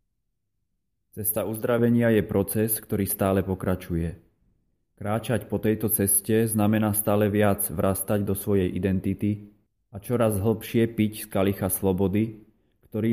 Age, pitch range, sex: 30-49, 100-110 Hz, male